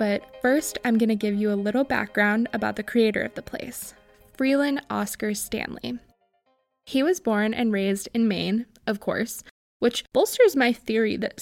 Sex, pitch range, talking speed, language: female, 210-255 Hz, 175 wpm, English